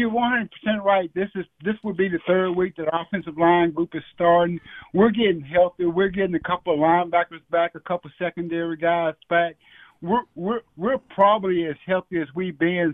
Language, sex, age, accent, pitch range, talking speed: English, male, 60-79, American, 155-190 Hz, 195 wpm